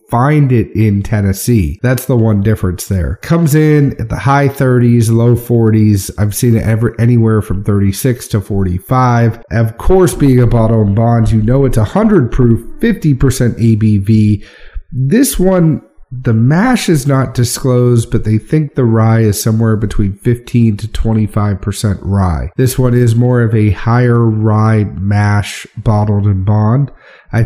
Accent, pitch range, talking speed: American, 105-125 Hz, 160 wpm